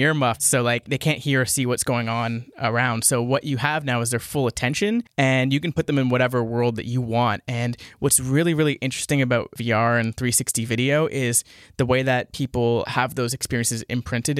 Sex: male